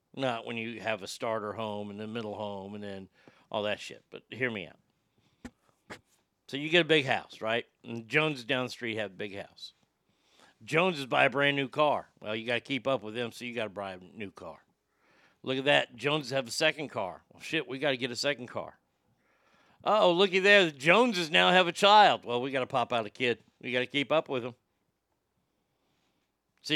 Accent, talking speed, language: American, 225 wpm, English